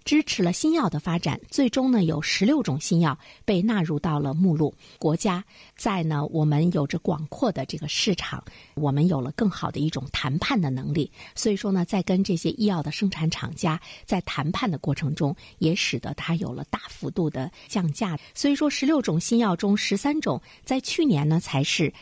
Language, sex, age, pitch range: Chinese, female, 50-69, 150-215 Hz